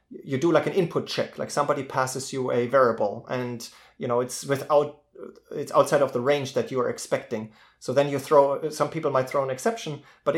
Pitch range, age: 125-155 Hz, 30-49